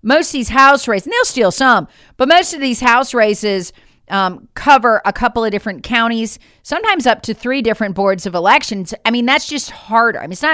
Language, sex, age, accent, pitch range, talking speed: English, female, 40-59, American, 200-275 Hz, 215 wpm